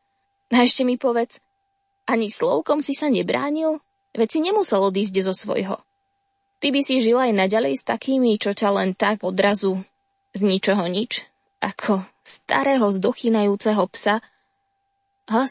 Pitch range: 205-300 Hz